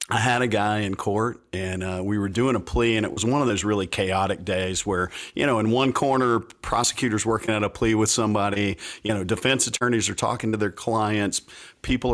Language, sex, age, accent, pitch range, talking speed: English, male, 50-69, American, 95-120 Hz, 225 wpm